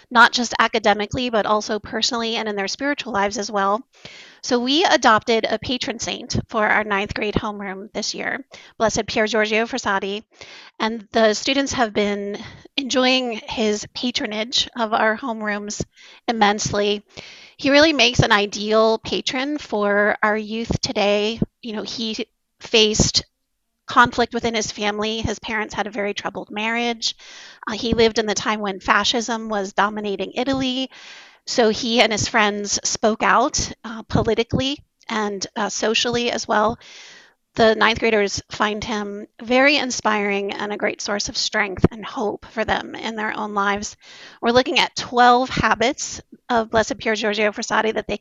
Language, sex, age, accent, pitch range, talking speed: English, female, 30-49, American, 210-240 Hz, 155 wpm